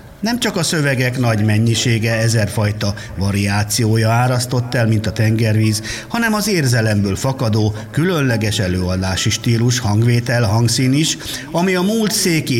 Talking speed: 130 wpm